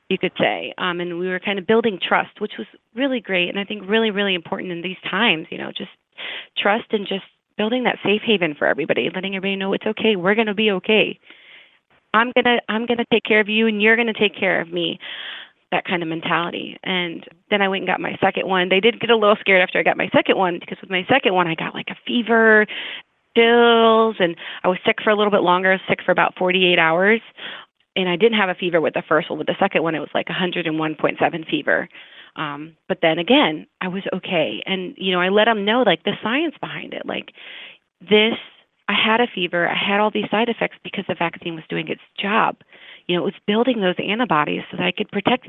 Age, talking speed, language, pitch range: 30-49, 235 wpm, English, 180-225 Hz